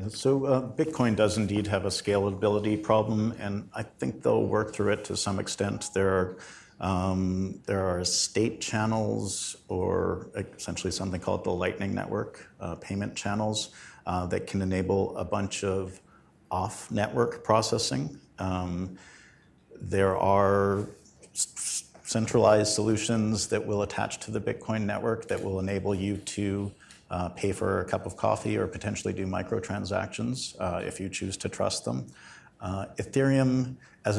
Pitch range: 95-110 Hz